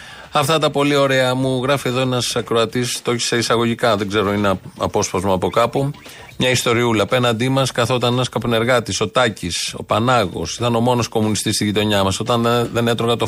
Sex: male